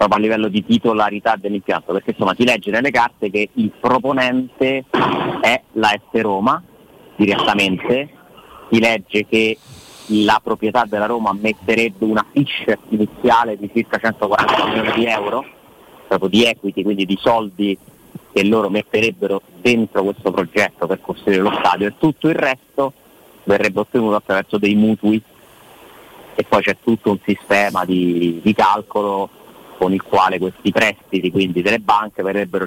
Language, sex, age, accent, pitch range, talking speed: Italian, male, 30-49, native, 100-115 Hz, 145 wpm